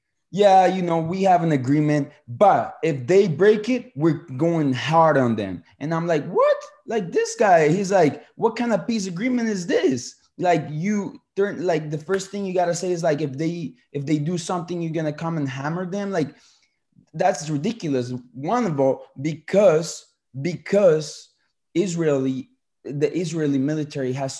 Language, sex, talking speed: English, male, 175 wpm